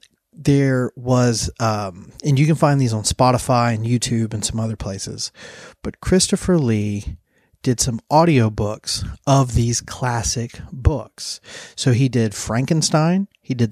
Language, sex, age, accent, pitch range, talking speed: English, male, 30-49, American, 110-135 Hz, 140 wpm